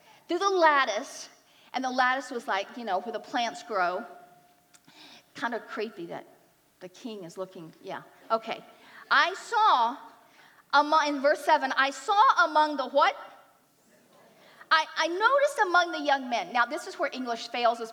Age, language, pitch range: 40-59, English, 235-315 Hz